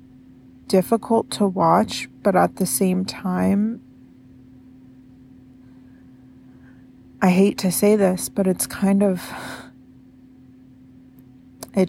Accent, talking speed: American, 90 wpm